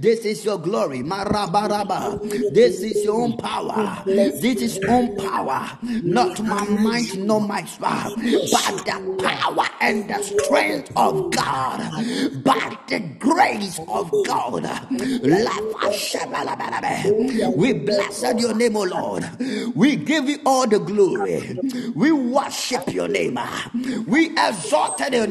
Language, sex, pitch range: Japanese, male, 225-265 Hz